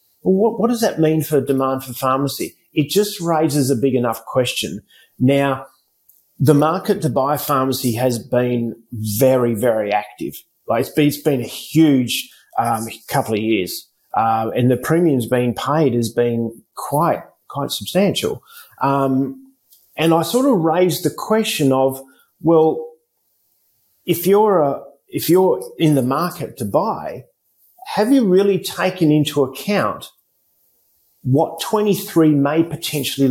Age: 40-59